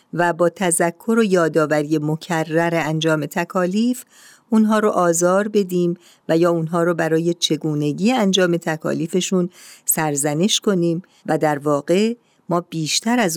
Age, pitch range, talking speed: 50-69, 160-210 Hz, 125 wpm